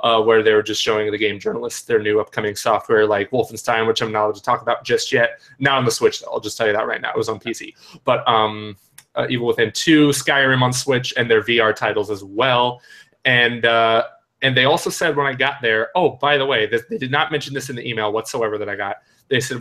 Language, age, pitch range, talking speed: English, 20-39, 115-155 Hz, 255 wpm